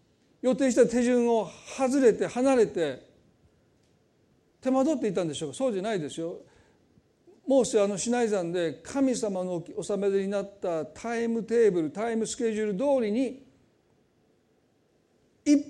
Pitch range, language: 180-260 Hz, Japanese